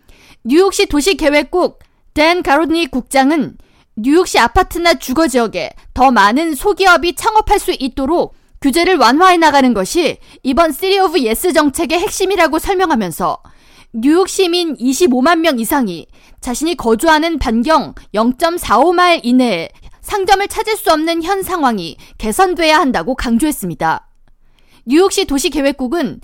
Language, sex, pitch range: Korean, female, 255-370 Hz